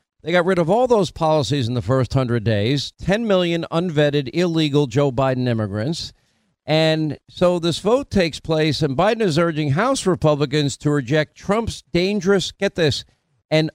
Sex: male